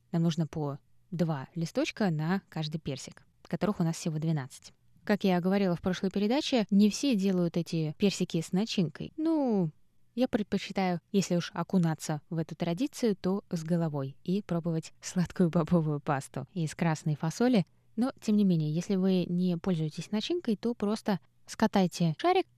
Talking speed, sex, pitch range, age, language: 155 wpm, female, 160-210 Hz, 20-39, Russian